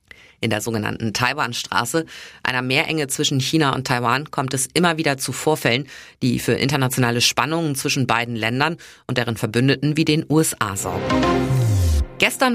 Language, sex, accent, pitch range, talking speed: German, female, German, 120-155 Hz, 150 wpm